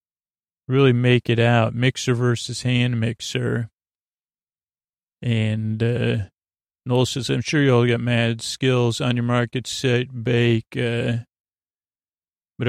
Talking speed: 125 wpm